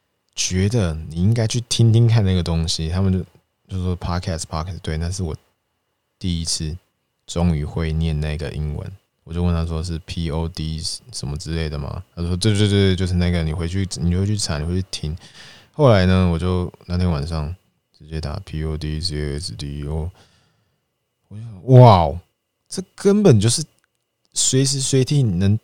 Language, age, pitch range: Chinese, 20-39, 85-110 Hz